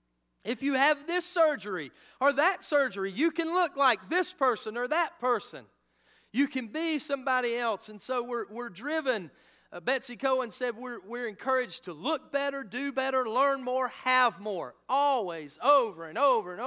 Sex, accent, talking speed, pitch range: male, American, 175 wpm, 225-290 Hz